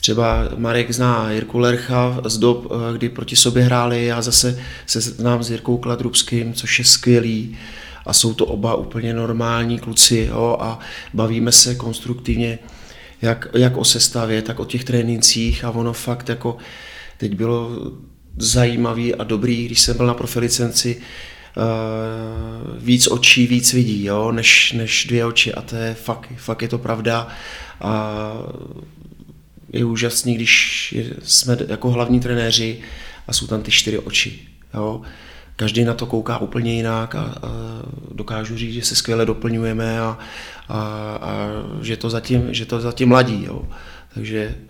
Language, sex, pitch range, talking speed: Czech, male, 110-120 Hz, 145 wpm